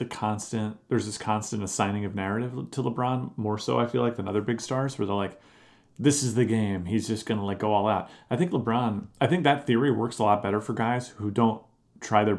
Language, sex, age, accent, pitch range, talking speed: English, male, 30-49, American, 105-125 Hz, 245 wpm